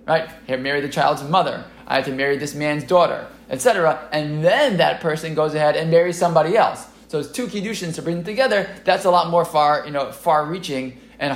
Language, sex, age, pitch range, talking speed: English, male, 20-39, 130-180 Hz, 220 wpm